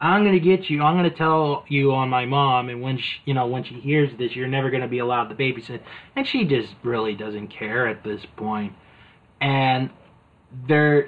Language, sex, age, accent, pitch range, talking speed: English, male, 30-49, American, 110-150 Hz, 205 wpm